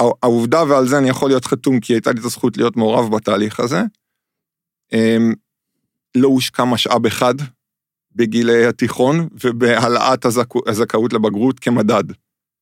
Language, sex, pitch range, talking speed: Hebrew, male, 120-140 Hz, 125 wpm